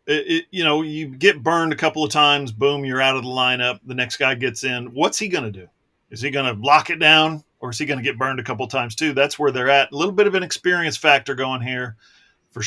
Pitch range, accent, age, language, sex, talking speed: 120-145 Hz, American, 40-59, English, male, 275 wpm